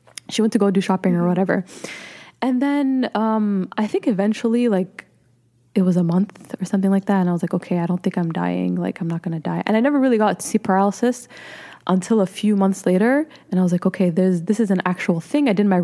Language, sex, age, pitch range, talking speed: English, female, 20-39, 180-220 Hz, 245 wpm